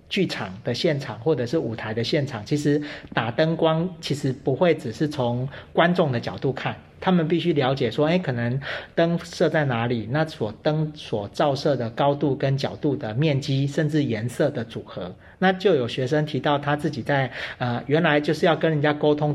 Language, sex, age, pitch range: Chinese, male, 40-59, 125-165 Hz